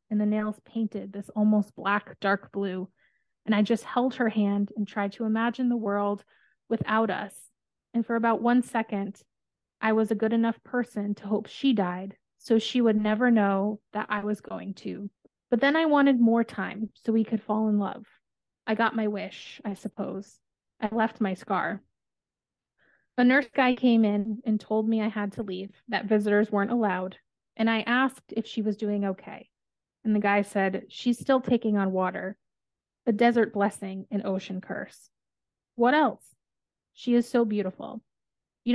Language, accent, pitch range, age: English, American, 200-235 Hz, 20-39